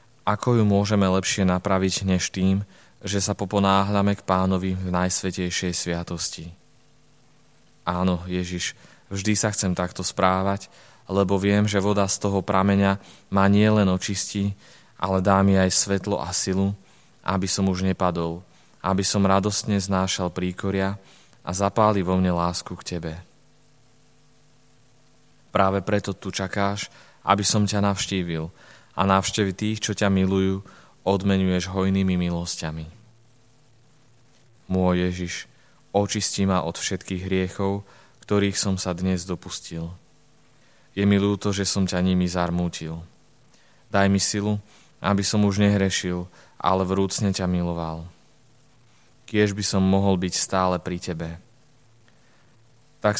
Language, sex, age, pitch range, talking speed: Slovak, male, 20-39, 90-105 Hz, 125 wpm